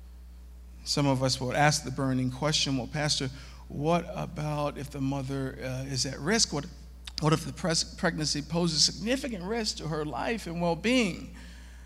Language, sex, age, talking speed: English, male, 50-69, 160 wpm